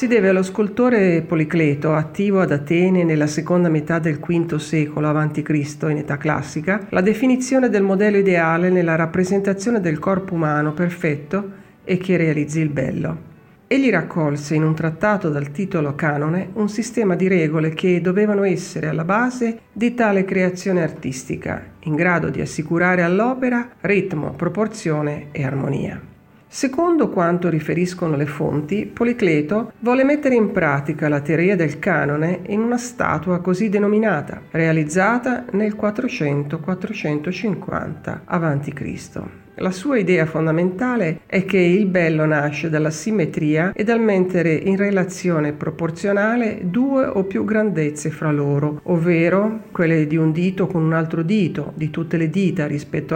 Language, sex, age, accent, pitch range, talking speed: Italian, female, 40-59, native, 155-205 Hz, 140 wpm